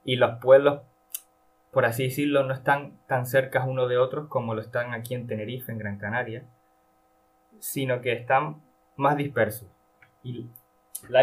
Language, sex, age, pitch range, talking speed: Spanish, male, 20-39, 100-130 Hz, 155 wpm